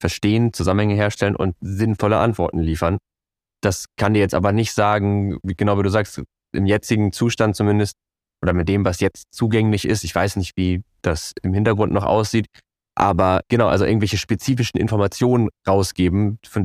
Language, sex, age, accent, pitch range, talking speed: German, male, 20-39, German, 95-110 Hz, 170 wpm